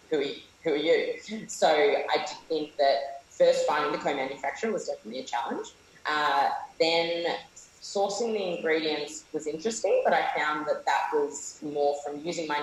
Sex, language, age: female, English, 20-39